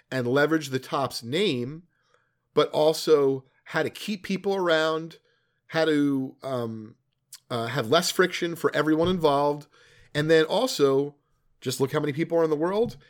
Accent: American